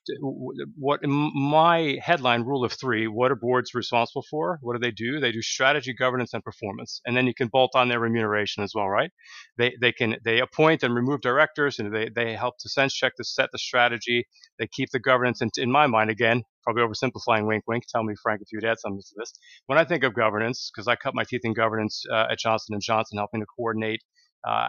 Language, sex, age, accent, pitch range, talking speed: English, male, 40-59, American, 115-140 Hz, 230 wpm